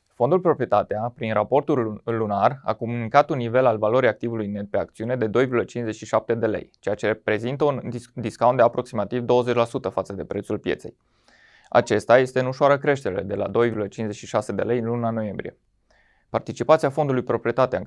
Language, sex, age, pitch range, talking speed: Romanian, male, 20-39, 105-125 Hz, 160 wpm